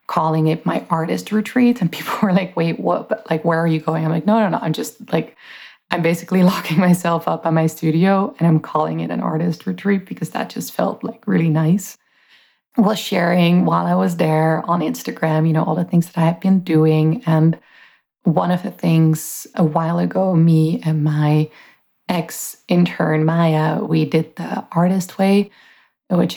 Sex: female